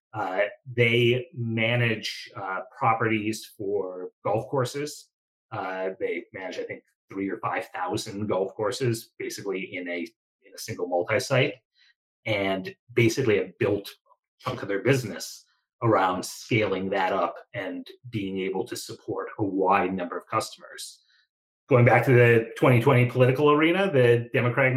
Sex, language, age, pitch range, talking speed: male, English, 30-49, 110-140 Hz, 140 wpm